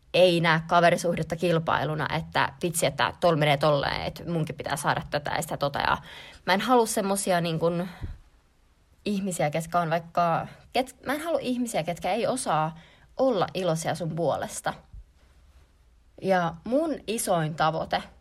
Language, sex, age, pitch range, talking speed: Finnish, female, 20-39, 160-200 Hz, 140 wpm